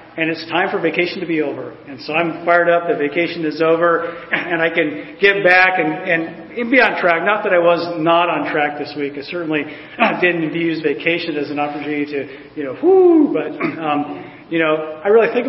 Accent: American